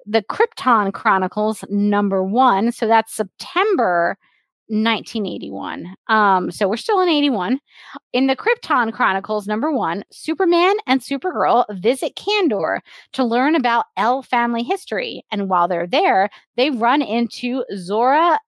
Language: English